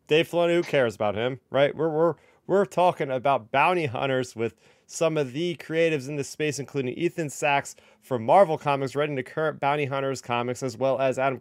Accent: American